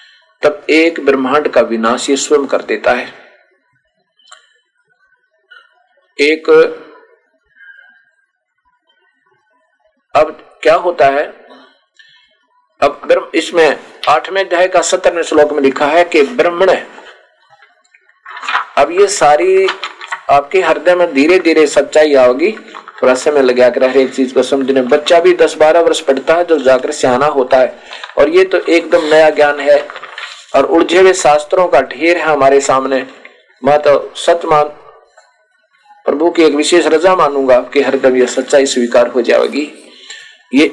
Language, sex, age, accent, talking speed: Hindi, male, 50-69, native, 120 wpm